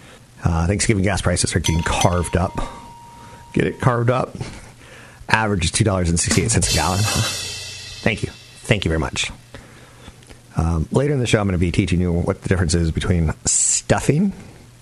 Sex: male